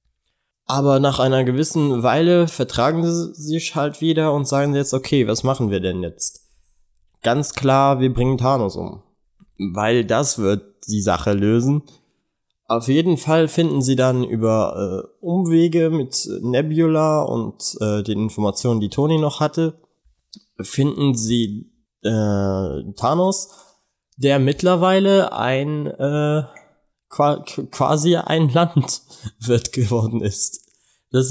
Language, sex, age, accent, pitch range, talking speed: German, male, 20-39, German, 115-155 Hz, 125 wpm